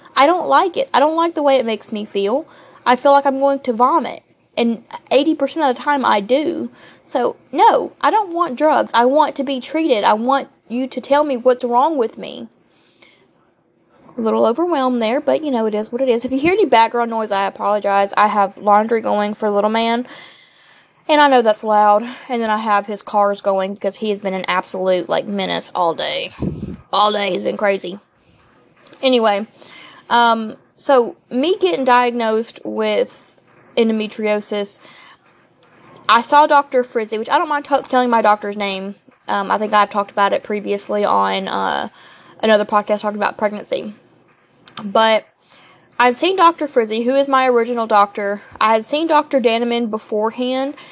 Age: 20-39